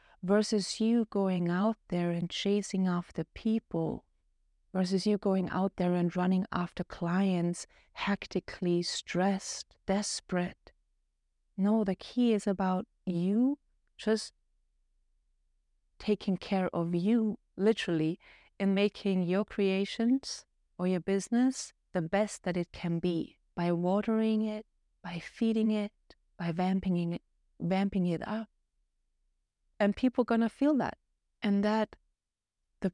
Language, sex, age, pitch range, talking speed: English, female, 30-49, 175-205 Hz, 120 wpm